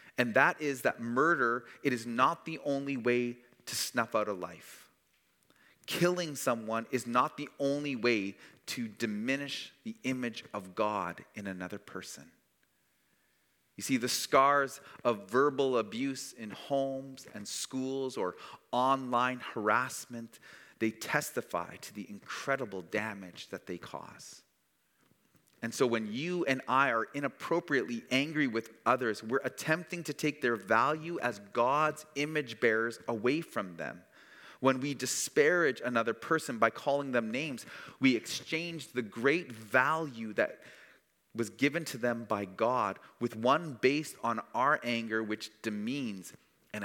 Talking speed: 140 wpm